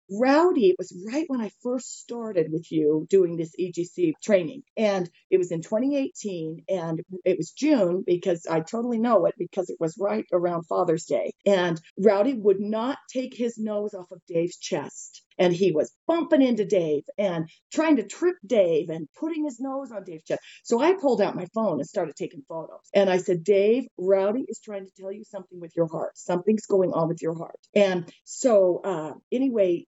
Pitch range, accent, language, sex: 180-245 Hz, American, English, female